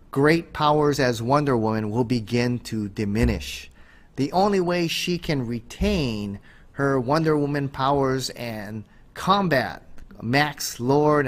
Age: 30-49